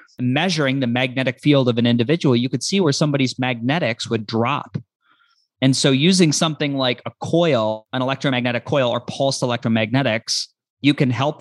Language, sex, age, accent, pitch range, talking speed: English, male, 30-49, American, 115-135 Hz, 165 wpm